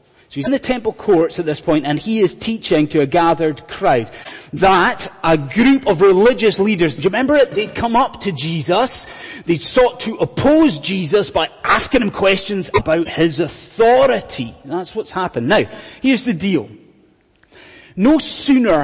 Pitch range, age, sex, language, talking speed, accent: 150-220 Hz, 30-49, male, English, 170 wpm, British